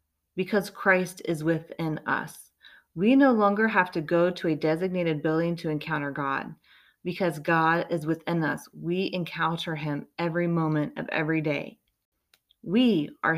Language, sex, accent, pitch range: English, female, American, 160-205 Hz